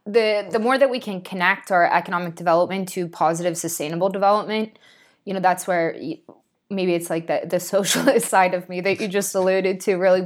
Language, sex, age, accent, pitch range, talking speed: English, female, 20-39, American, 165-190 Hz, 195 wpm